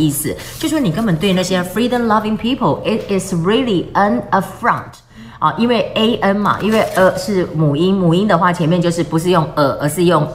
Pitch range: 165-215 Hz